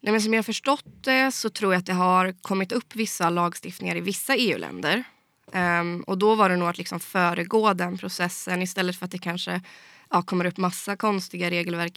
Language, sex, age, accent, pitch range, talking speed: Swedish, female, 20-39, native, 175-215 Hz, 210 wpm